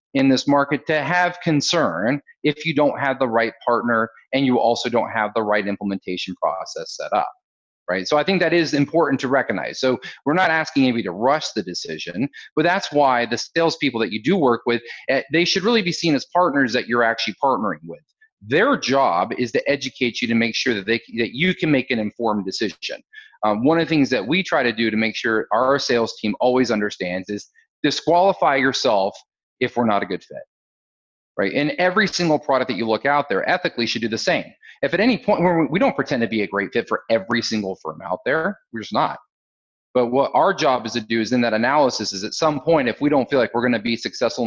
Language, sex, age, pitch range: English, male, 30-49, 115-155 Hz